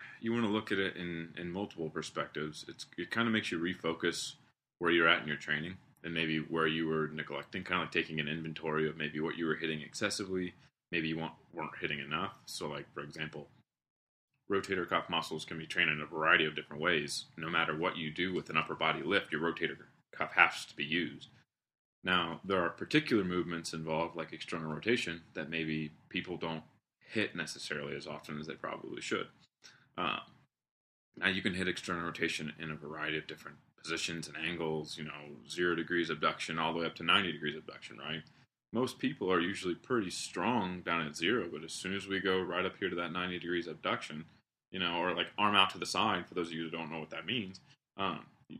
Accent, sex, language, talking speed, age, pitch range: American, male, English, 215 wpm, 30-49, 80-95 Hz